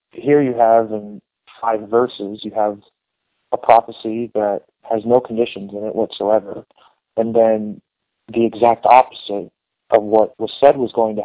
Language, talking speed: English, 155 wpm